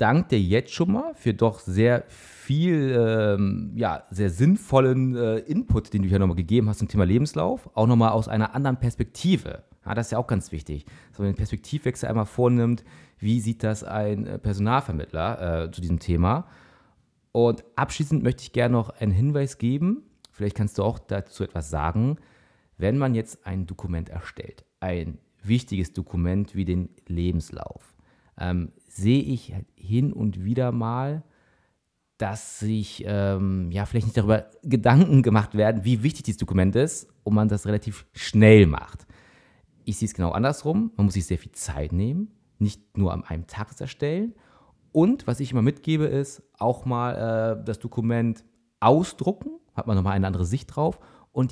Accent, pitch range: German, 100-130 Hz